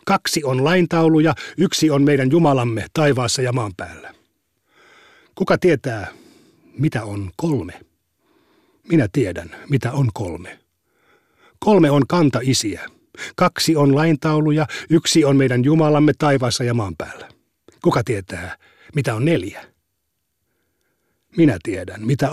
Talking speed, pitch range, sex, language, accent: 115 wpm, 120-155 Hz, male, Finnish, native